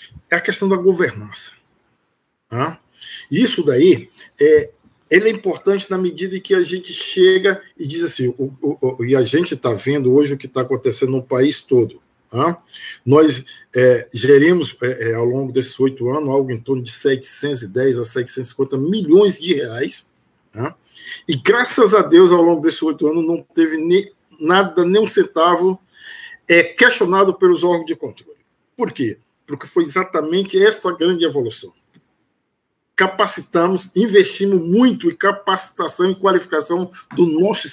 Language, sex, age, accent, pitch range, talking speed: Portuguese, male, 50-69, Brazilian, 145-205 Hz, 155 wpm